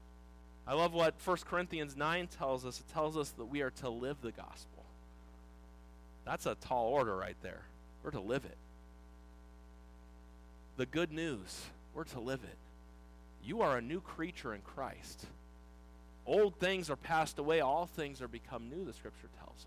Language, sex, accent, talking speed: English, male, American, 170 wpm